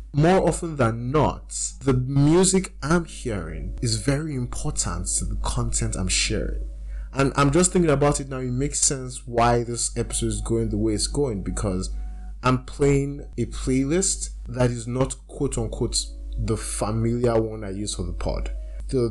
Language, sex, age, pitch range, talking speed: English, male, 20-39, 95-125 Hz, 165 wpm